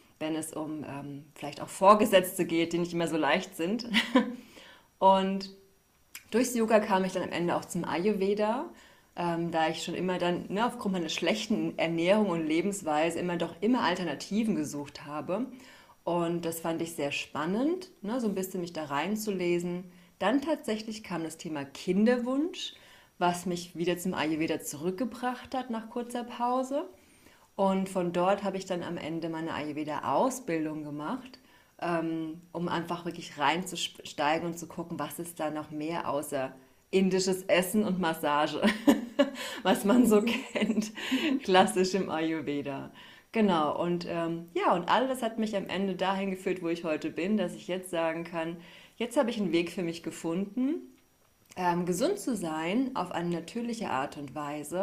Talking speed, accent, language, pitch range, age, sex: 160 wpm, German, German, 160-215 Hz, 30-49, female